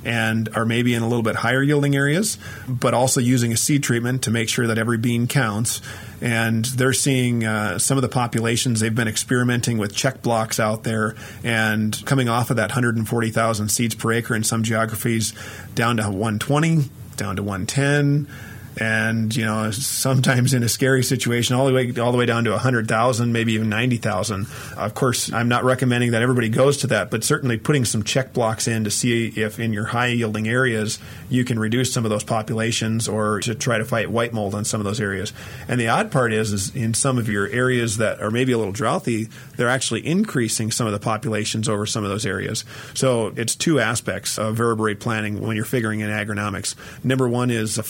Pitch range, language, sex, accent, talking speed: 110-125 Hz, English, male, American, 205 wpm